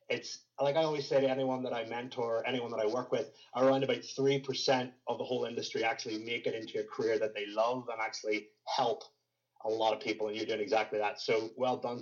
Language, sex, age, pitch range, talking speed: English, male, 30-49, 110-135 Hz, 230 wpm